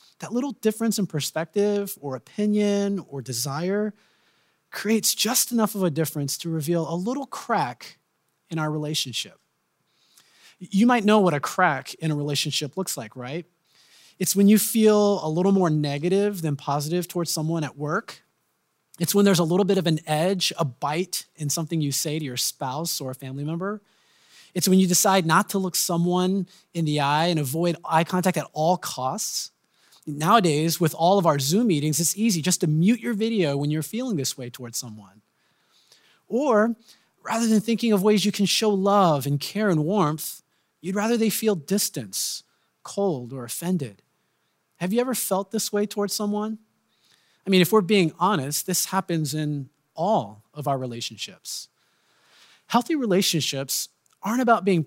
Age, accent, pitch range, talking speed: 30-49, American, 150-205 Hz, 175 wpm